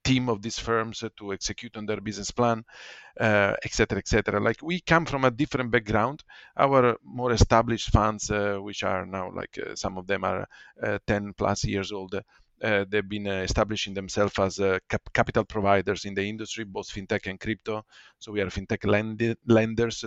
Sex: male